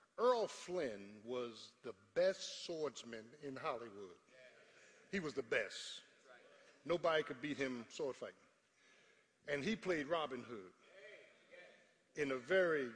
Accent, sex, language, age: American, male, English, 50-69